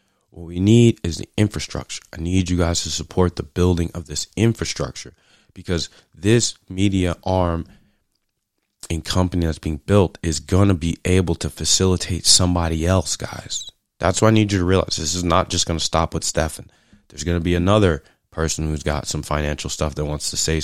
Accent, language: American, English